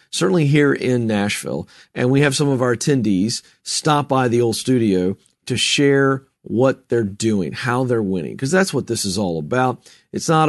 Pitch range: 110-140 Hz